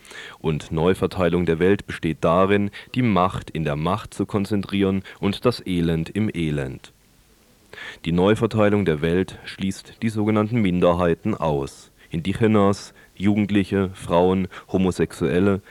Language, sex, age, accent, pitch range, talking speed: German, male, 30-49, German, 85-105 Hz, 120 wpm